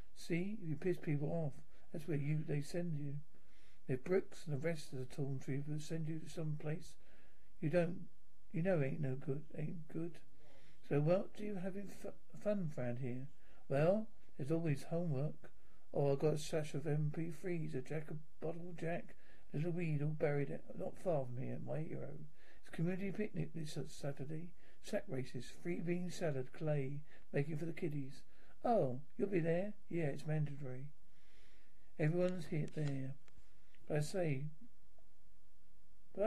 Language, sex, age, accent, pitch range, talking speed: English, male, 50-69, British, 145-175 Hz, 165 wpm